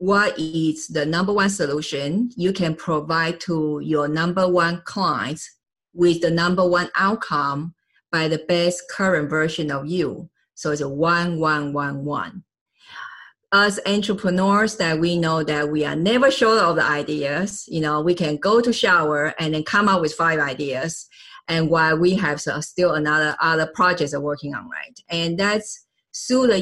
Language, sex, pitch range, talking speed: English, female, 155-205 Hz, 175 wpm